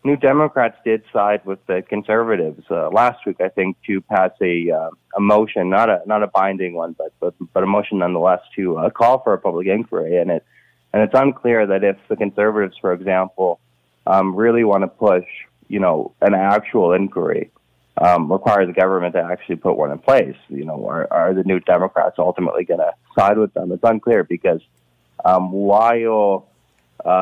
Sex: male